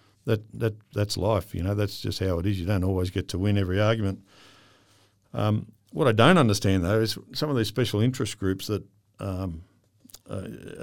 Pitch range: 95-115 Hz